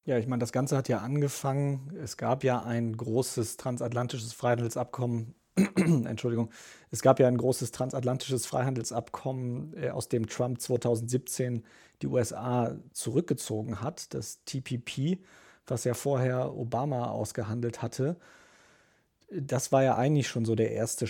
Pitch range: 115-130 Hz